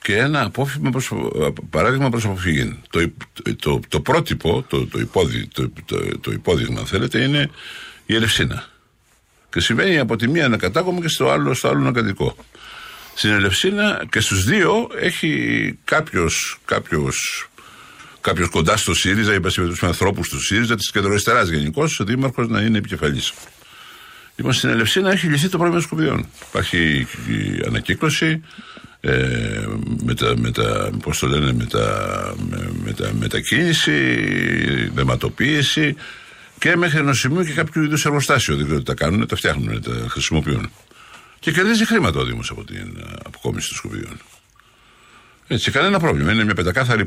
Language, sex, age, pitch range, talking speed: Greek, male, 60-79, 90-150 Hz, 145 wpm